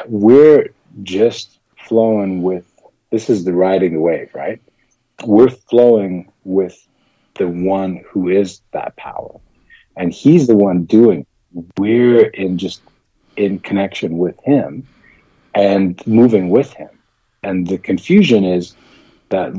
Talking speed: 130 wpm